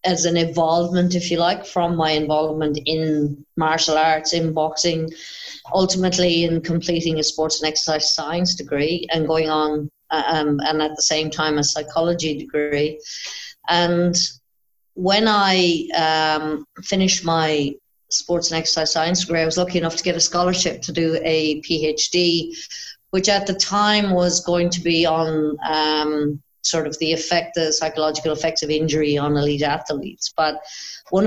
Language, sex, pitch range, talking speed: English, female, 150-175 Hz, 155 wpm